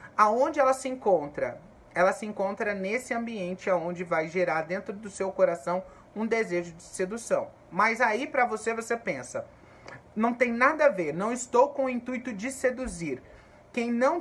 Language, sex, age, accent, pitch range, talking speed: Portuguese, male, 30-49, Brazilian, 180-235 Hz, 170 wpm